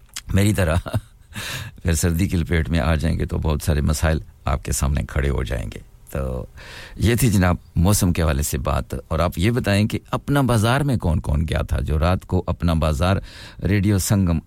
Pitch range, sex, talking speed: 80-95 Hz, male, 185 wpm